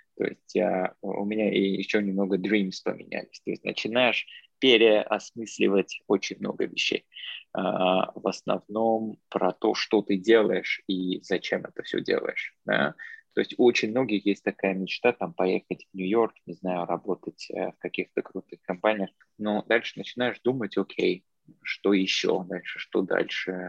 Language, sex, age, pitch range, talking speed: Russian, male, 20-39, 95-110 Hz, 140 wpm